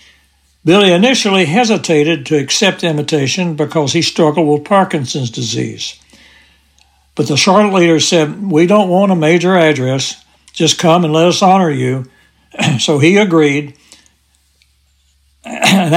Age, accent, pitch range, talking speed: 60-79, American, 135-180 Hz, 130 wpm